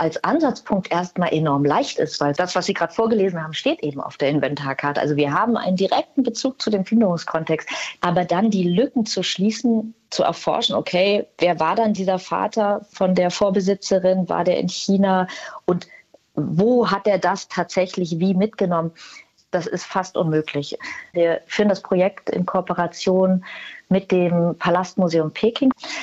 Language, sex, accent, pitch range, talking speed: German, female, German, 170-200 Hz, 160 wpm